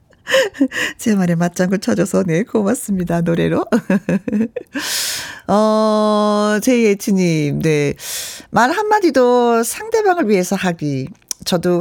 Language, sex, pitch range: Korean, female, 185-275 Hz